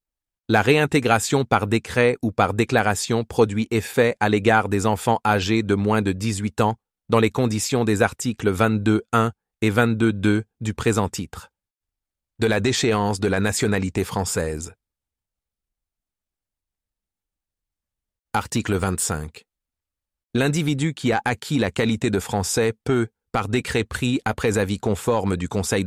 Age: 40-59